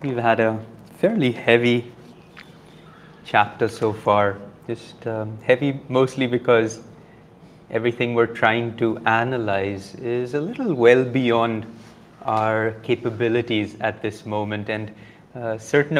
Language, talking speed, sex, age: English, 115 wpm, male, 30-49